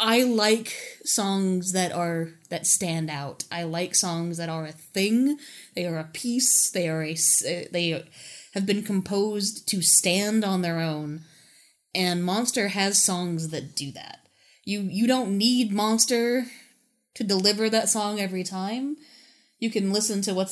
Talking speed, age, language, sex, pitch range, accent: 160 wpm, 20-39, English, female, 170-215 Hz, American